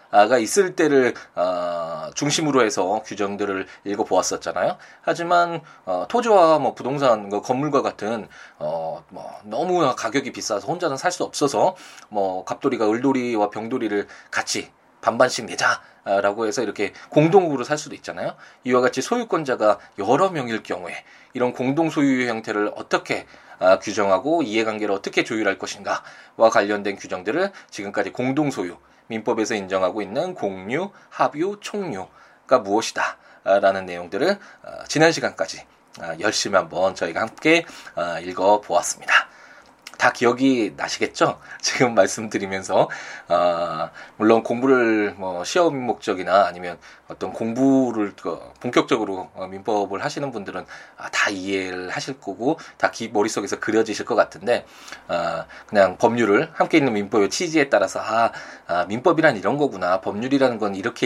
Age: 20-39